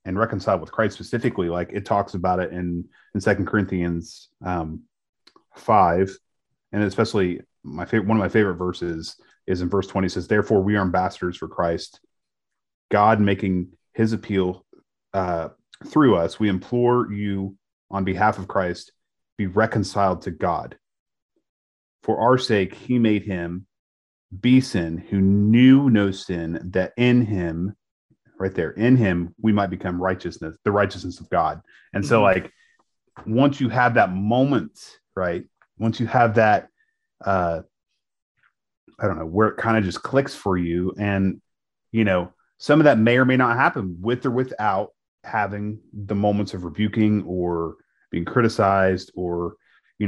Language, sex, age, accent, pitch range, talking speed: English, male, 30-49, American, 90-110 Hz, 155 wpm